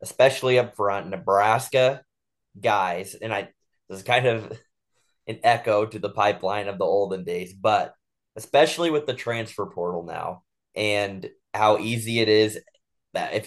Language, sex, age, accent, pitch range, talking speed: English, male, 20-39, American, 100-115 Hz, 150 wpm